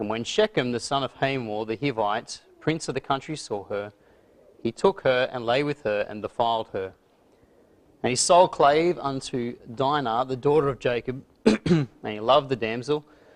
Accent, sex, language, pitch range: Australian, male, English, 110-135 Hz